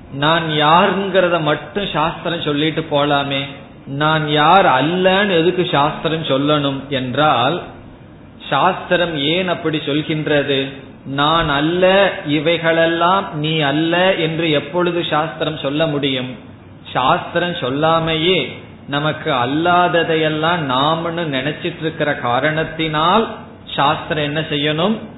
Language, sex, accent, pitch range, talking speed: Tamil, male, native, 135-175 Hz, 85 wpm